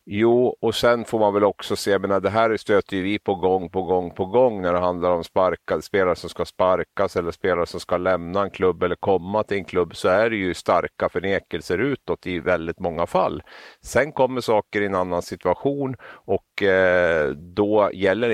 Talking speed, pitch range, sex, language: 205 wpm, 90-115 Hz, male, Swedish